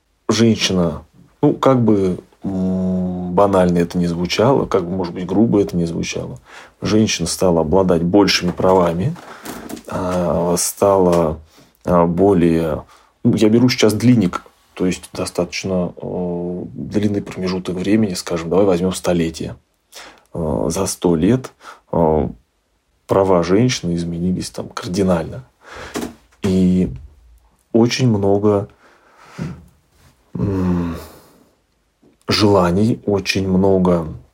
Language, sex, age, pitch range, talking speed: Russian, male, 30-49, 85-100 Hz, 90 wpm